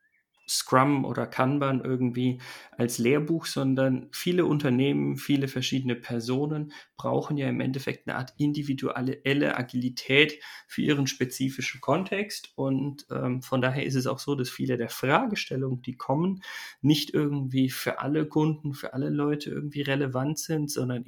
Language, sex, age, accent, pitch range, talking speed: German, male, 40-59, German, 125-145 Hz, 140 wpm